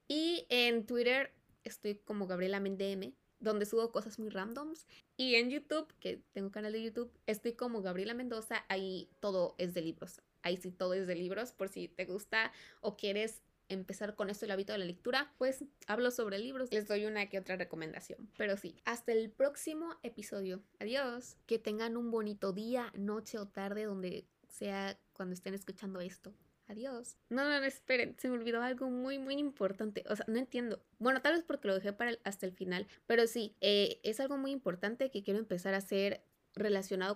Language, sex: Spanish, female